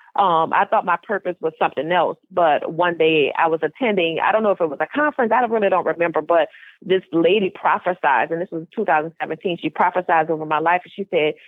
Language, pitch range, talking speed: English, 170-215 Hz, 205 wpm